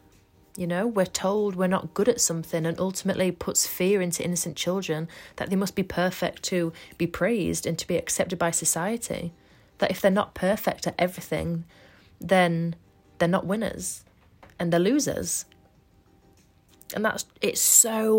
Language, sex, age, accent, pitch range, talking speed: English, female, 30-49, British, 160-195 Hz, 160 wpm